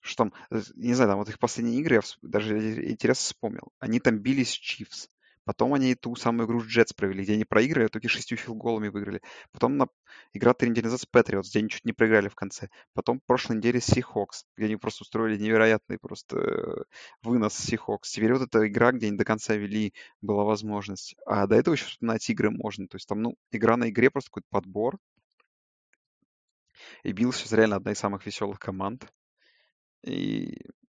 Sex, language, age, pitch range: male, Russian, 20-39, 100-120 Hz